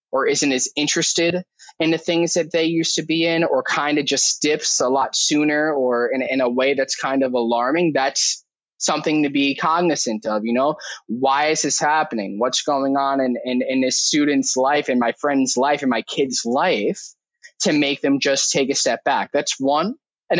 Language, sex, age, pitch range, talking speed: English, male, 20-39, 140-180 Hz, 205 wpm